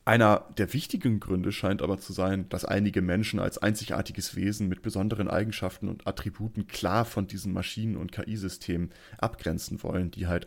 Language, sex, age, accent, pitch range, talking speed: German, male, 30-49, German, 95-110 Hz, 165 wpm